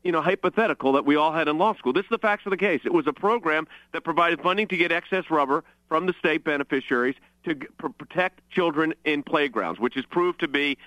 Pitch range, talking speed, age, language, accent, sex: 140-195 Hz, 230 wpm, 40-59, English, American, male